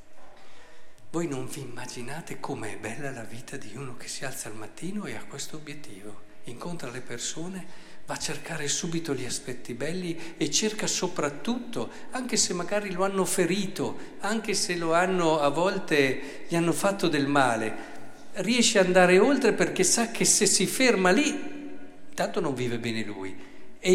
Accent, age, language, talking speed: native, 50-69, Italian, 165 wpm